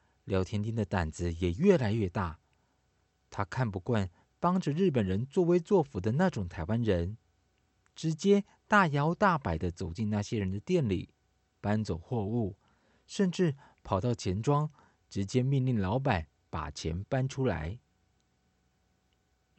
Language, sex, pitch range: Chinese, male, 95-140 Hz